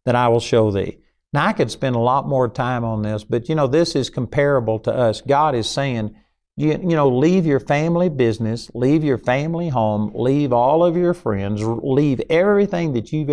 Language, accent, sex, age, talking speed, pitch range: English, American, male, 50-69, 205 wpm, 110-150 Hz